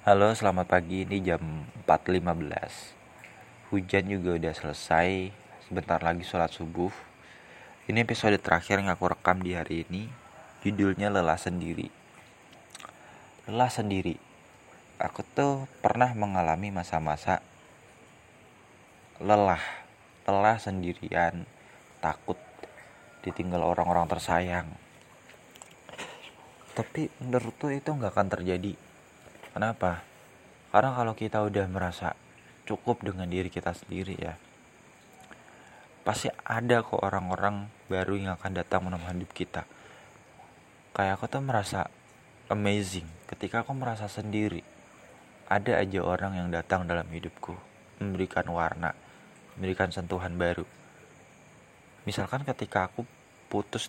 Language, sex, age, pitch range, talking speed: Indonesian, male, 30-49, 90-105 Hz, 105 wpm